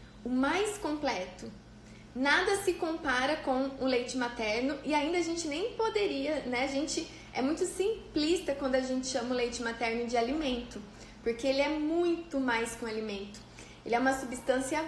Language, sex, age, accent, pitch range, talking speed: Portuguese, female, 20-39, Brazilian, 230-290 Hz, 175 wpm